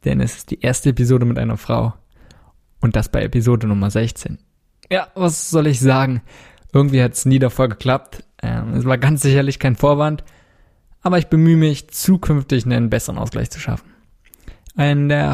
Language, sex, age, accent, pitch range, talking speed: German, male, 20-39, German, 120-150 Hz, 175 wpm